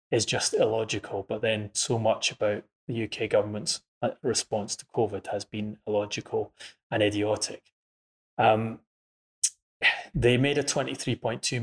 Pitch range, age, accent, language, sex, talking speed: 105-115 Hz, 20-39, British, English, male, 125 wpm